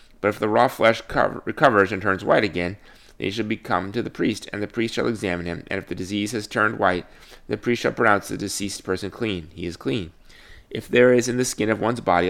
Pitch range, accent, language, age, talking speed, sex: 90-110 Hz, American, English, 30-49, 255 wpm, male